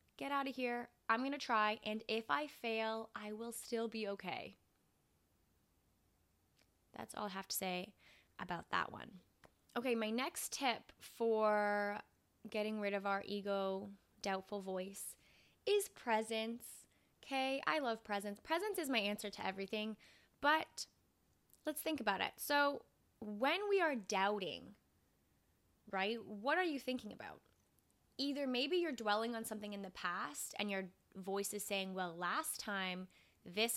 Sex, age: female, 20-39